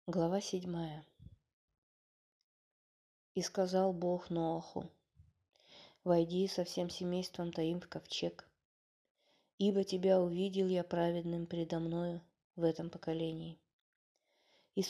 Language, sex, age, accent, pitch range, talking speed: Russian, female, 20-39, native, 165-190 Hz, 95 wpm